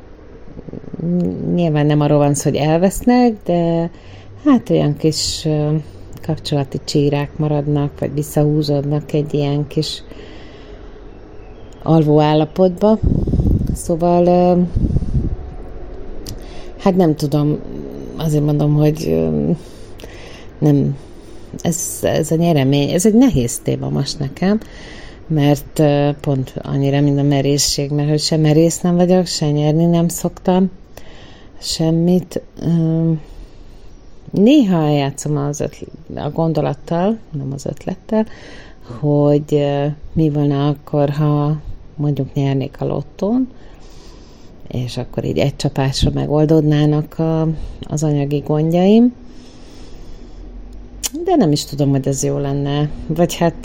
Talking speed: 105 wpm